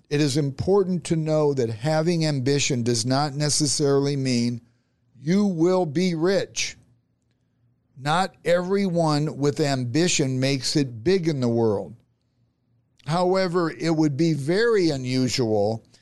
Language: English